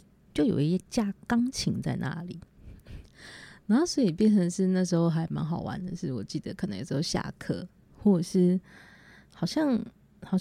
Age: 20-39